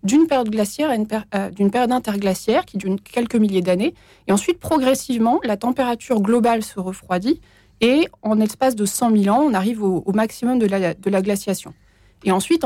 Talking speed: 200 wpm